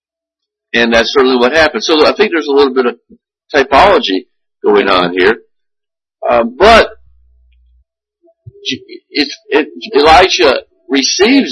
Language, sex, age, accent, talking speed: English, male, 50-69, American, 125 wpm